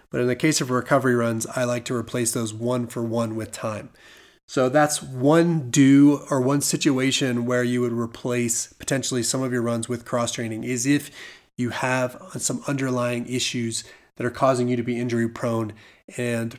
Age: 30-49